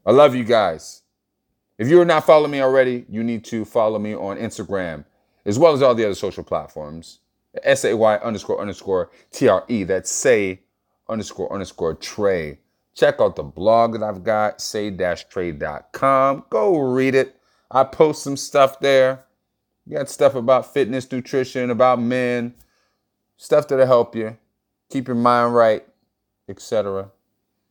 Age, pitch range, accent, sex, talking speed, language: 30-49, 110-145 Hz, American, male, 150 wpm, English